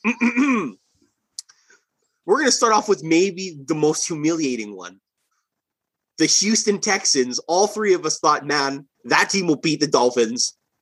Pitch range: 140-205 Hz